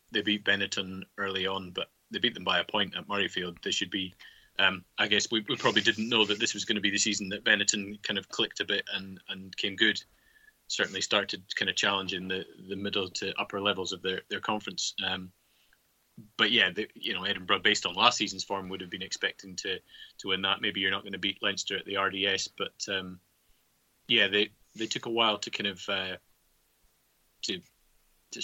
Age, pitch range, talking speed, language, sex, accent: 20-39, 95-105 Hz, 215 wpm, English, male, British